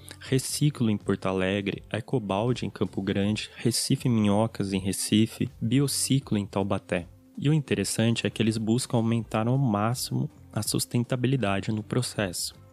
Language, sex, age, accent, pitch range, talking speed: Portuguese, male, 20-39, Brazilian, 105-130 Hz, 135 wpm